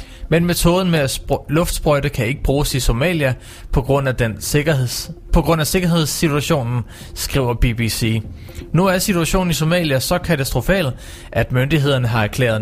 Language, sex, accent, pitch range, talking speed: Danish, male, native, 115-155 Hz, 150 wpm